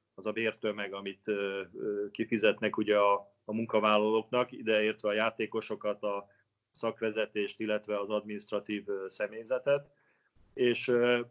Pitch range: 105-125 Hz